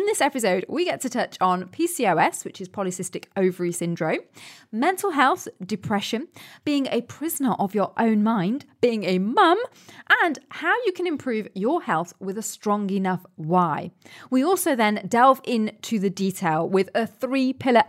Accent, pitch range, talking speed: British, 195-270 Hz, 165 wpm